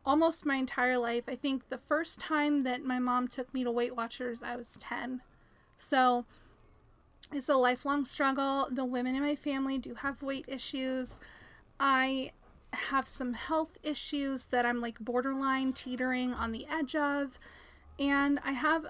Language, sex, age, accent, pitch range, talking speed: English, female, 30-49, American, 250-280 Hz, 160 wpm